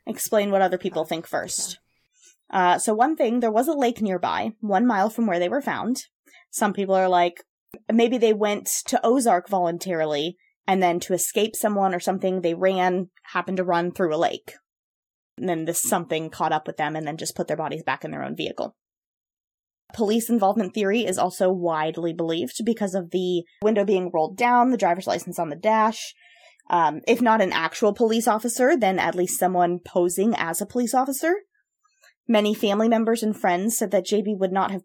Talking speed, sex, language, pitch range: 195 wpm, female, English, 175-230 Hz